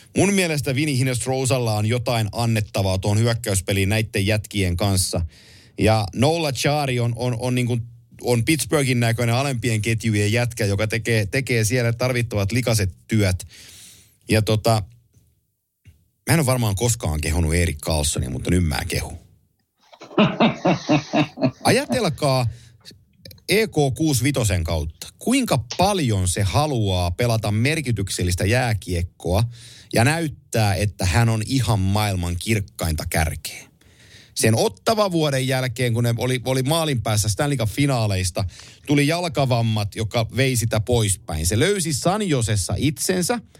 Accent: native